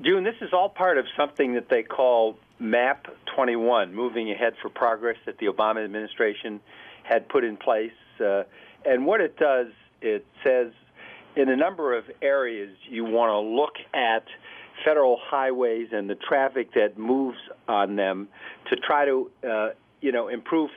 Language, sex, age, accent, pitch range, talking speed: English, male, 50-69, American, 105-135 Hz, 165 wpm